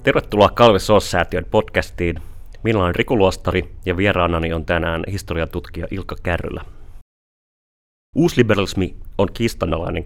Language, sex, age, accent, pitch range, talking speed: Finnish, male, 30-49, native, 85-100 Hz, 95 wpm